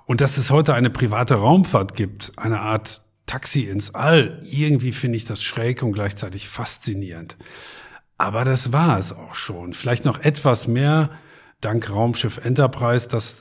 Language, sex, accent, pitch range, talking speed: German, male, German, 110-140 Hz, 155 wpm